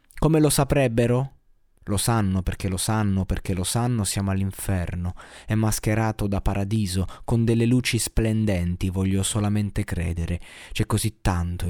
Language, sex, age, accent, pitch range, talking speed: Italian, male, 20-39, native, 95-115 Hz, 140 wpm